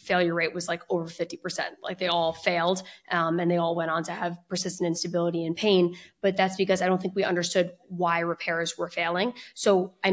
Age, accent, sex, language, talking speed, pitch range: 20-39, American, female, English, 215 wpm, 175-195 Hz